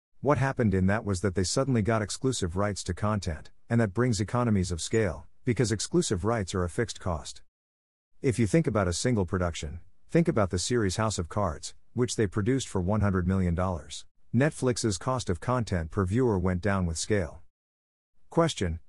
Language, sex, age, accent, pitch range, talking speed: English, male, 50-69, American, 85-115 Hz, 180 wpm